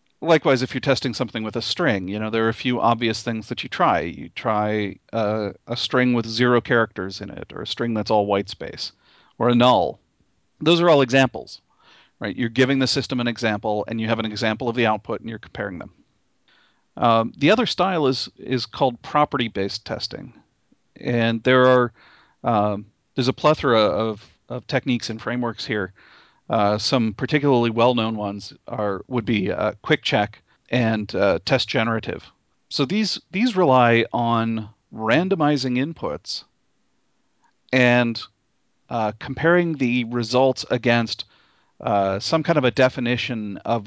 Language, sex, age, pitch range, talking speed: English, male, 40-59, 110-130 Hz, 165 wpm